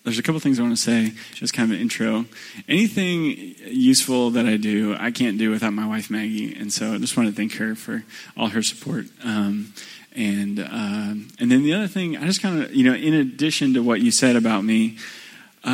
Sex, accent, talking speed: male, American, 225 wpm